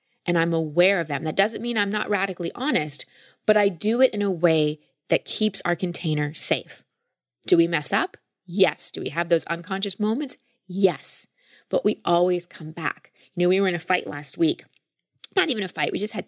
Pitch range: 160-195 Hz